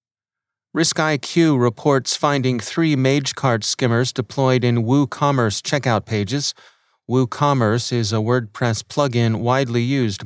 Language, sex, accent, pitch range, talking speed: English, male, American, 115-140 Hz, 105 wpm